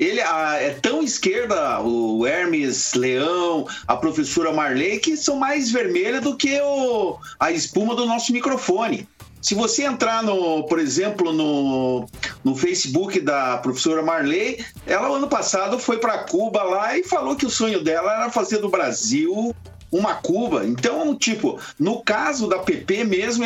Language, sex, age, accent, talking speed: Portuguese, male, 50-69, Brazilian, 155 wpm